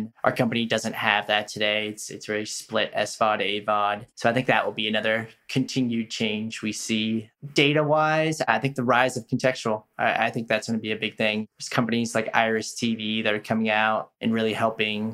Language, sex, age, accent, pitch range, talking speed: English, male, 20-39, American, 105-115 Hz, 210 wpm